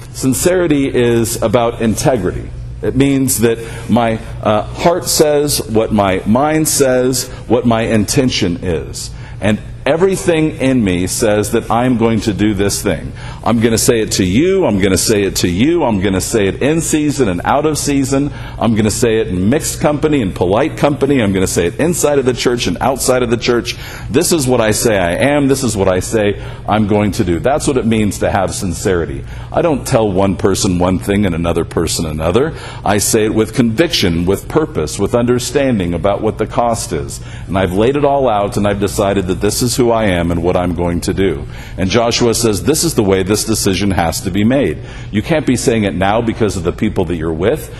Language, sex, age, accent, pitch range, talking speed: English, male, 50-69, American, 100-130 Hz, 220 wpm